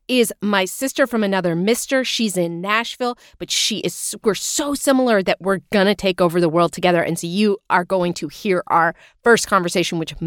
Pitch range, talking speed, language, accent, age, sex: 180-240 Hz, 200 wpm, English, American, 30-49, female